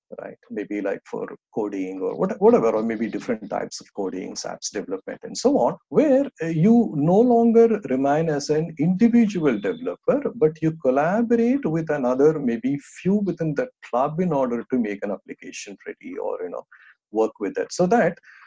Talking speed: 170 wpm